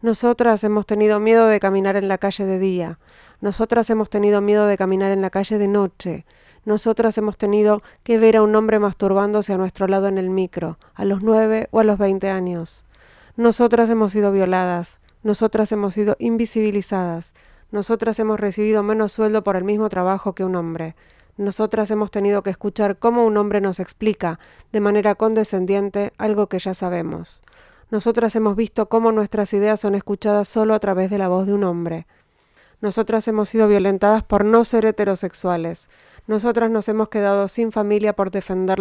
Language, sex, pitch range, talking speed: Spanish, female, 190-220 Hz, 180 wpm